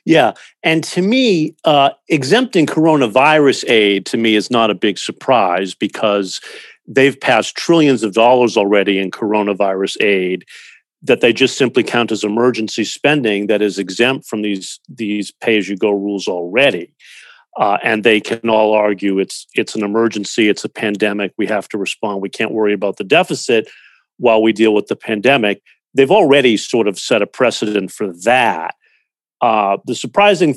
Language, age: English, 50-69